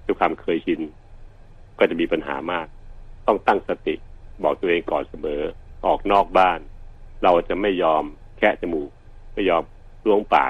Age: 70-89